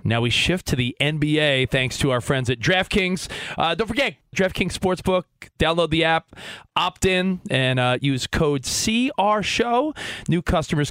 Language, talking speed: English, 160 wpm